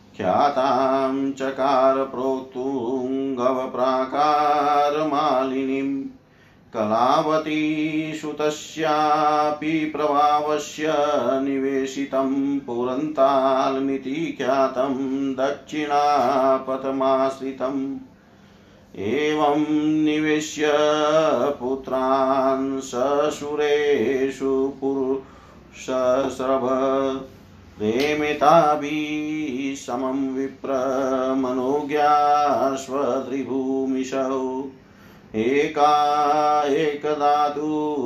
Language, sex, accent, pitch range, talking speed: Hindi, male, native, 130-145 Hz, 35 wpm